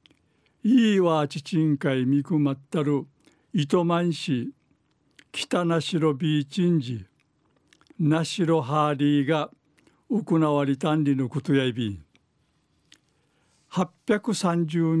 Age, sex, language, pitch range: 60-79, male, Japanese, 140-170 Hz